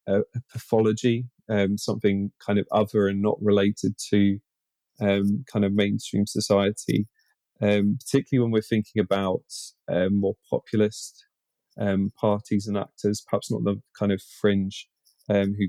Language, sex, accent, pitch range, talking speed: English, male, British, 100-105 Hz, 145 wpm